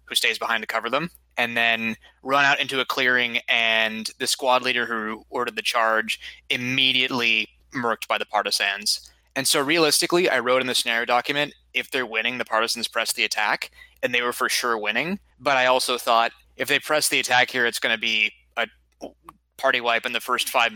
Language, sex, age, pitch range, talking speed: English, male, 20-39, 110-130 Hz, 200 wpm